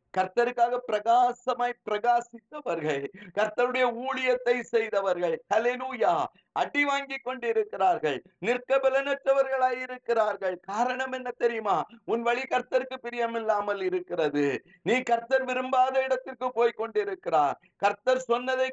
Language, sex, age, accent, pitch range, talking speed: Tamil, male, 50-69, native, 215-260 Hz, 85 wpm